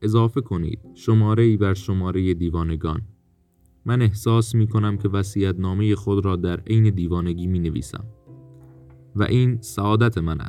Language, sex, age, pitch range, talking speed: Persian, male, 30-49, 95-110 Hz, 145 wpm